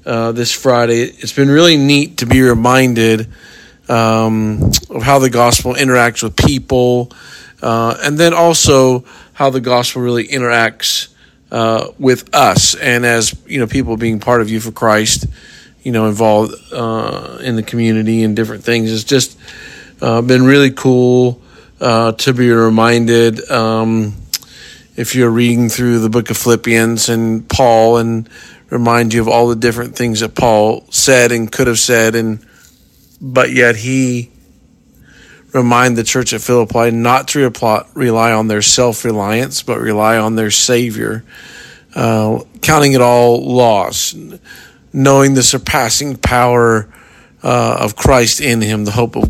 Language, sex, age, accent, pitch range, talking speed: English, male, 40-59, American, 110-125 Hz, 150 wpm